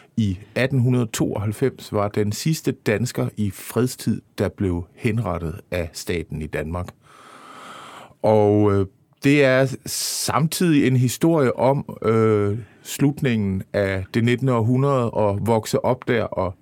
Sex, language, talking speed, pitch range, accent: male, Danish, 125 wpm, 100-125 Hz, native